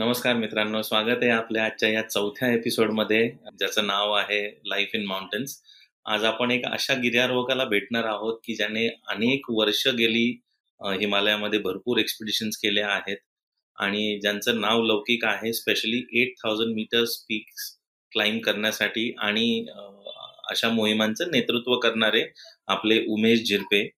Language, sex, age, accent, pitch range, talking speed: Marathi, male, 30-49, native, 105-115 Hz, 130 wpm